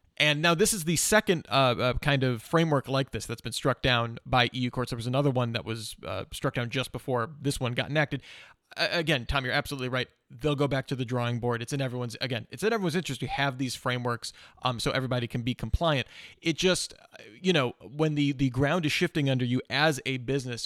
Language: English